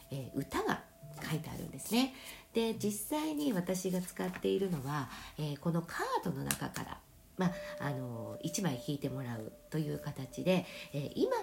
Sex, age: female, 50-69